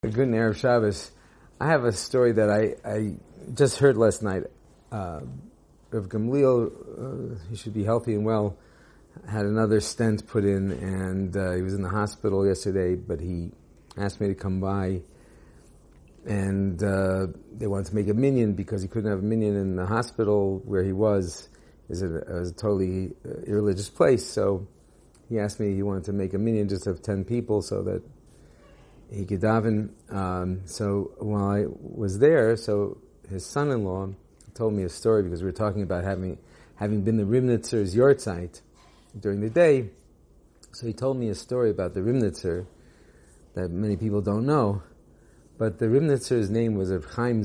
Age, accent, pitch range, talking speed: 50-69, American, 95-110 Hz, 175 wpm